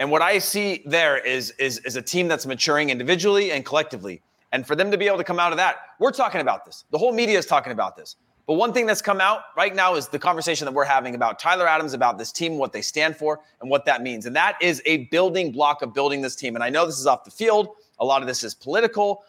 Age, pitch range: 30-49, 130-170 Hz